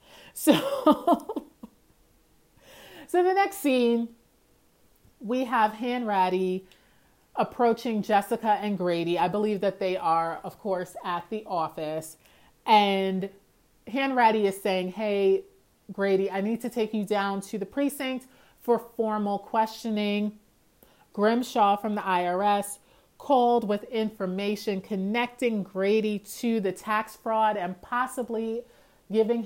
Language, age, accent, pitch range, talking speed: English, 40-59, American, 190-240 Hz, 115 wpm